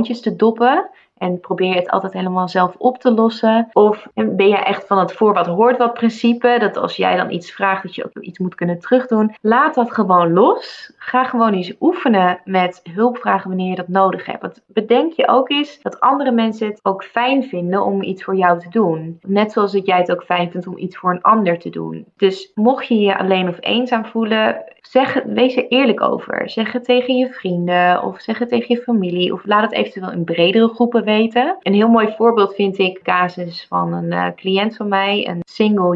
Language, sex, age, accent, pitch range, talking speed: Dutch, female, 20-39, Dutch, 180-230 Hz, 220 wpm